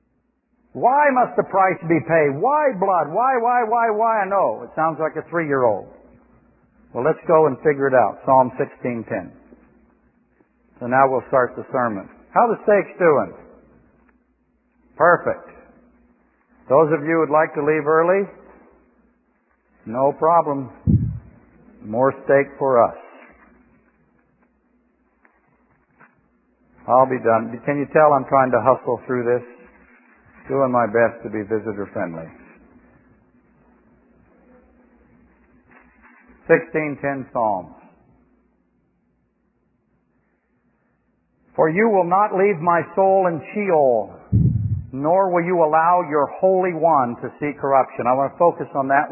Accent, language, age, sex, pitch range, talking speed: American, English, 60-79, male, 130-190 Hz, 120 wpm